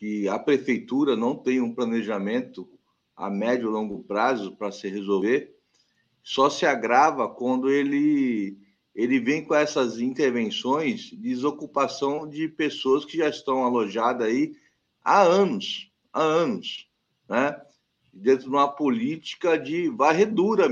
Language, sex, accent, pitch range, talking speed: Portuguese, male, Brazilian, 120-195 Hz, 125 wpm